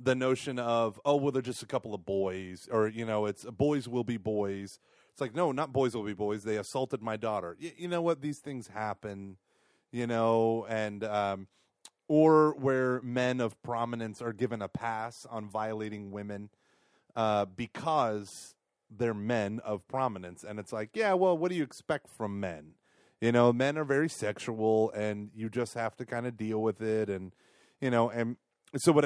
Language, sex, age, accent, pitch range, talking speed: English, male, 30-49, American, 105-135 Hz, 190 wpm